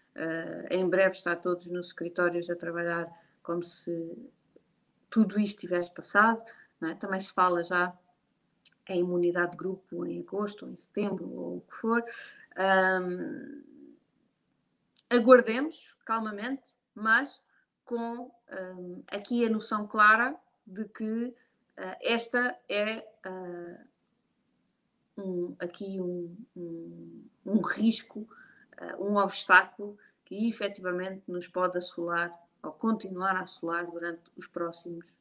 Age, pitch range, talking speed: 20-39, 175-225 Hz, 120 wpm